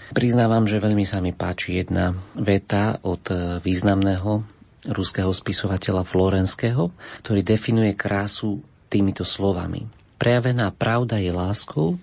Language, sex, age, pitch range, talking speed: Slovak, male, 40-59, 95-105 Hz, 110 wpm